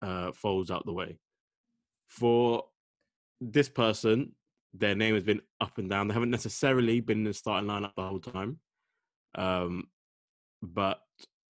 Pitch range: 95-115 Hz